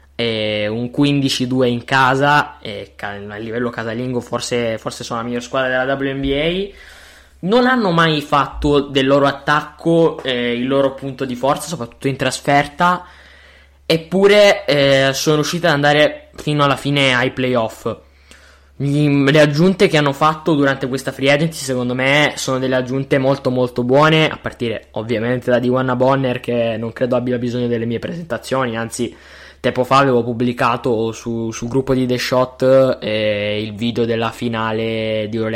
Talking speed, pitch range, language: 155 wpm, 115-140 Hz, Italian